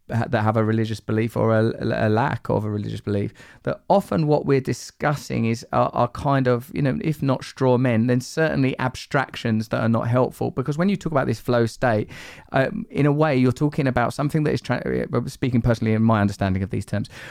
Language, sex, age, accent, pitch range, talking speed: English, male, 30-49, British, 110-140 Hz, 215 wpm